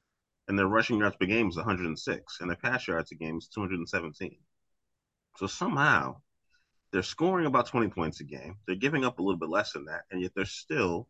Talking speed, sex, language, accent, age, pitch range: 205 wpm, male, English, American, 30-49, 85-100 Hz